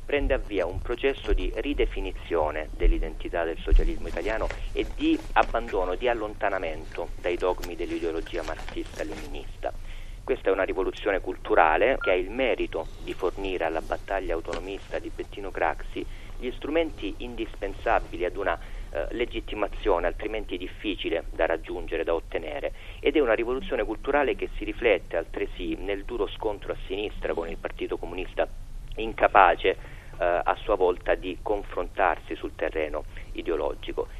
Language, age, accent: Italian, 40-59, native